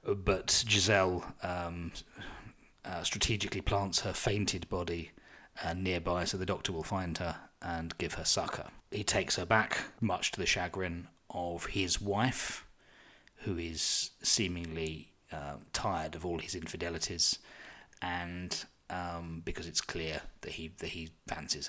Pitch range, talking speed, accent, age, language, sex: 80-95 Hz, 140 wpm, British, 30-49, English, male